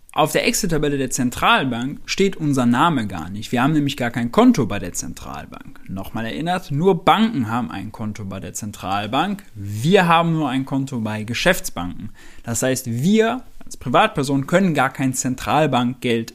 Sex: male